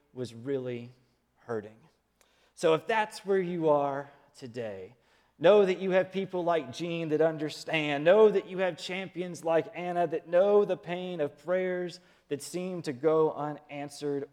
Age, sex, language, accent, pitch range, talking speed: 30-49, male, English, American, 140-185 Hz, 155 wpm